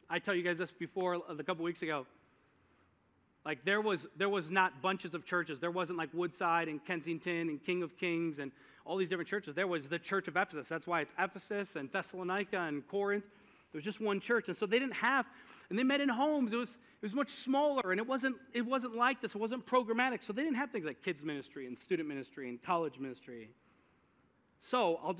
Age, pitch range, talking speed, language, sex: 40-59, 150-195 Hz, 225 wpm, English, male